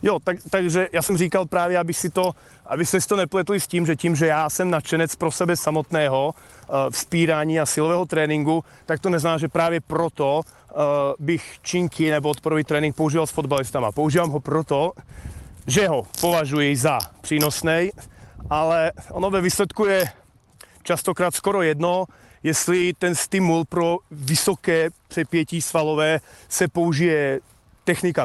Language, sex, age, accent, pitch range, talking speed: Czech, male, 30-49, native, 155-180 Hz, 140 wpm